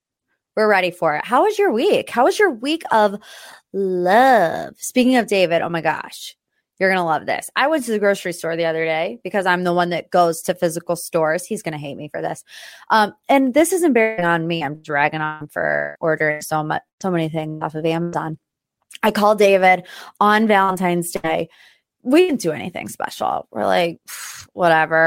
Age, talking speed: 20-39, 200 wpm